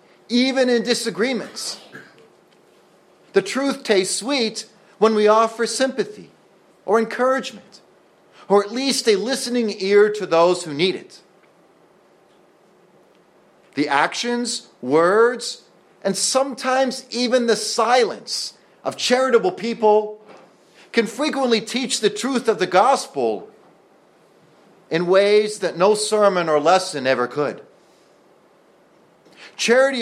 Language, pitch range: English, 190-240 Hz